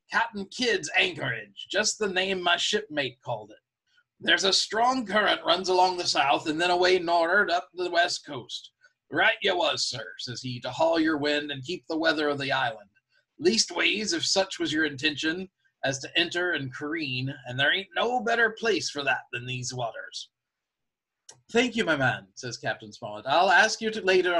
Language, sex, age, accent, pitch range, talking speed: English, male, 30-49, American, 135-195 Hz, 185 wpm